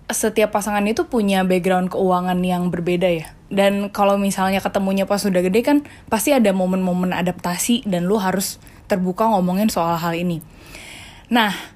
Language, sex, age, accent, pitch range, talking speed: Indonesian, female, 20-39, native, 180-235 Hz, 155 wpm